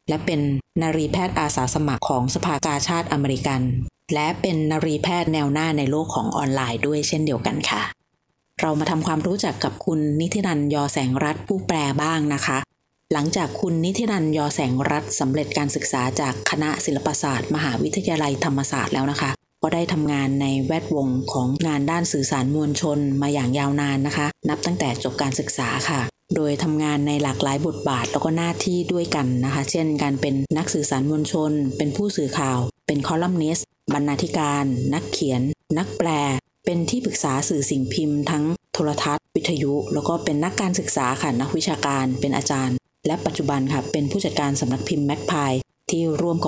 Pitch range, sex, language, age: 140-160 Hz, female, Thai, 20-39